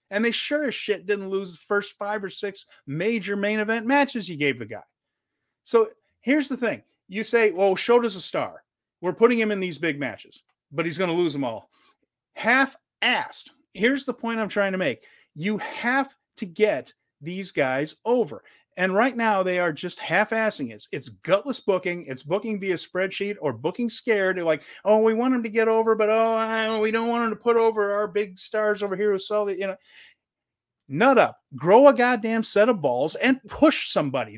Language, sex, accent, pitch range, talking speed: English, male, American, 190-235 Hz, 200 wpm